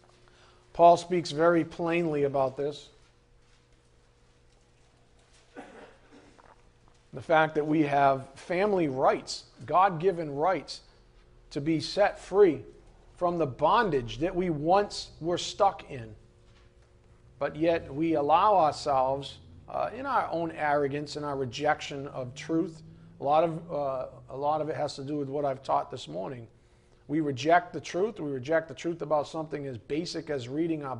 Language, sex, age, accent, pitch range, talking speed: English, male, 40-59, American, 130-190 Hz, 140 wpm